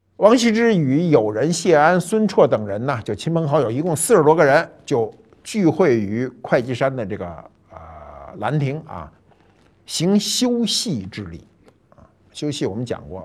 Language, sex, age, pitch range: Chinese, male, 50-69, 110-160 Hz